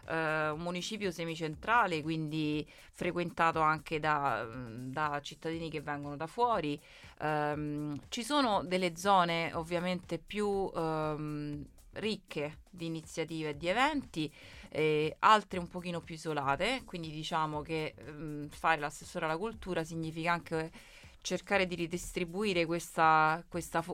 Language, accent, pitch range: Italian, native, 155-180 Hz